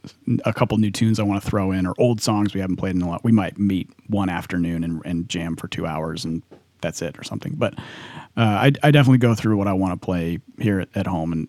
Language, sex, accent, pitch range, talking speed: English, male, American, 95-120 Hz, 265 wpm